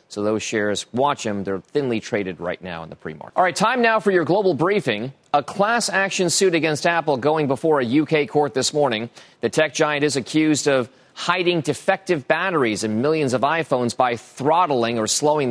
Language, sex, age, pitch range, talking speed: English, male, 30-49, 120-155 Hz, 195 wpm